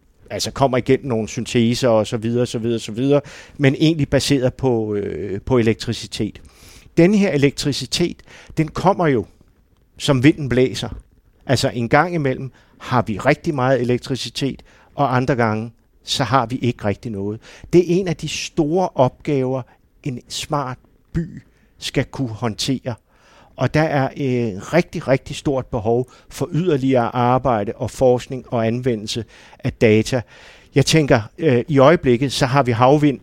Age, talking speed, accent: 50-69, 155 wpm, native